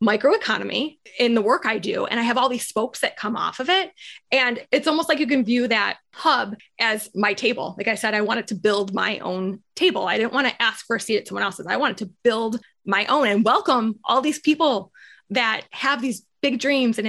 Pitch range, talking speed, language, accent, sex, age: 215-265 Hz, 235 wpm, English, American, female, 20-39